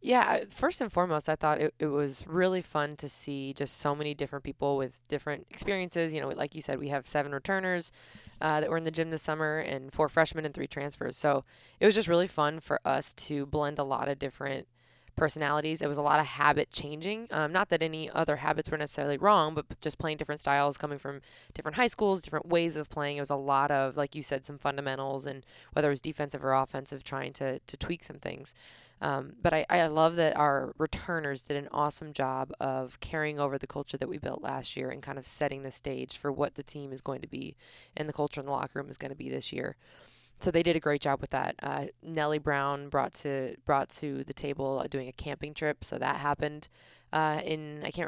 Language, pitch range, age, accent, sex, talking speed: English, 140-155 Hz, 20-39, American, female, 235 wpm